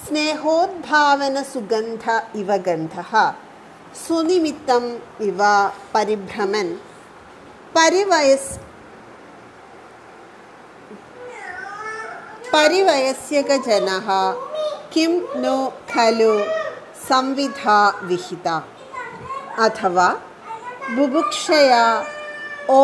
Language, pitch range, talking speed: Hindi, 215-350 Hz, 35 wpm